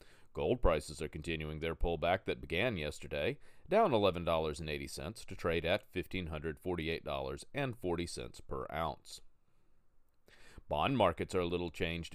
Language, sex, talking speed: English, male, 115 wpm